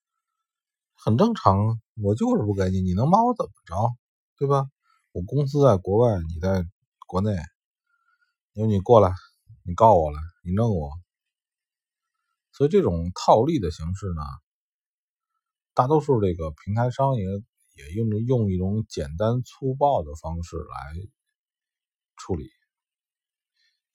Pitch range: 95-155 Hz